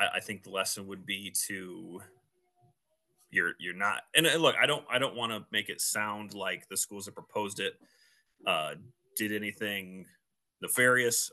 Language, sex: English, male